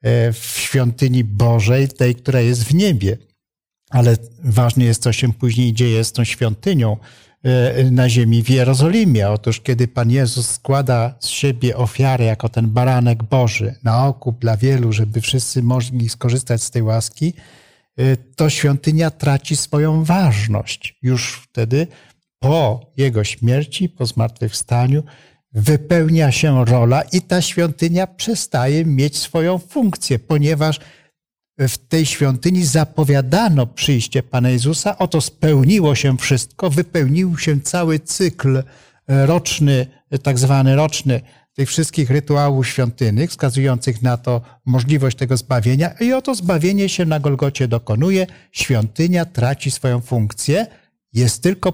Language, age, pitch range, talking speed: Polish, 50-69, 120-155 Hz, 130 wpm